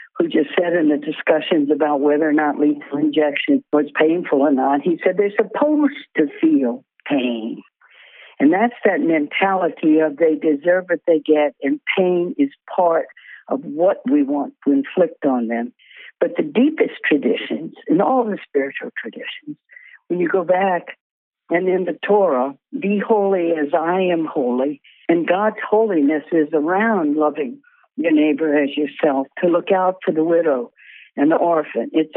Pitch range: 155-260 Hz